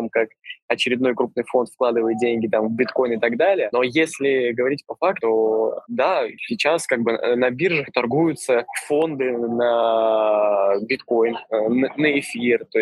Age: 20-39